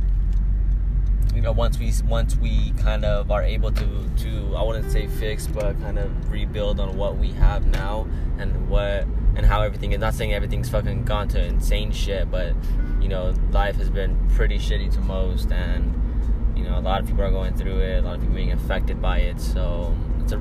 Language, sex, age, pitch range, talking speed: English, male, 10-29, 95-110 Hz, 205 wpm